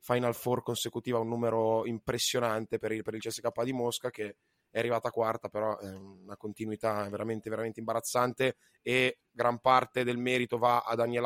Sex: male